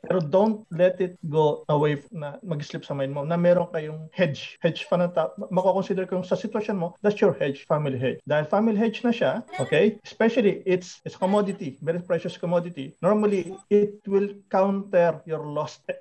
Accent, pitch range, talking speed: native, 160-205 Hz, 180 wpm